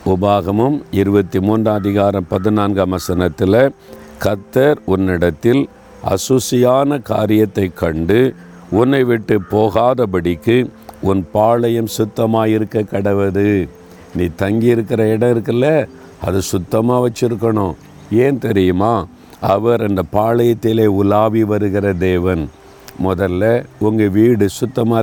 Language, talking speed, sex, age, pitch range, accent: Tamil, 95 wpm, male, 50-69, 95-115 Hz, native